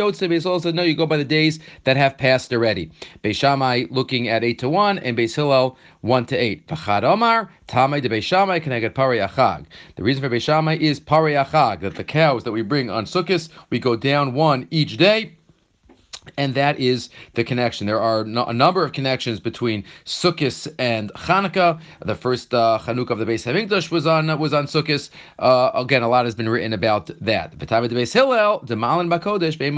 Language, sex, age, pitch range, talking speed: English, male, 40-59, 120-165 Hz, 165 wpm